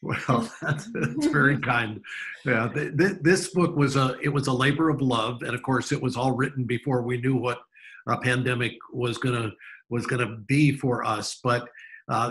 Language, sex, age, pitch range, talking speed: English, male, 50-69, 120-145 Hz, 190 wpm